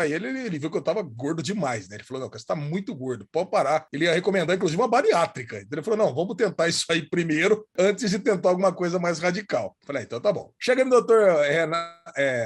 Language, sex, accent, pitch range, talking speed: Portuguese, male, Brazilian, 165-230 Hz, 240 wpm